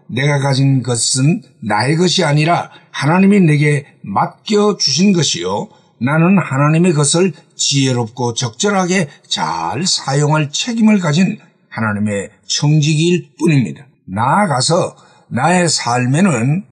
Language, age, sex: Korean, 60-79, male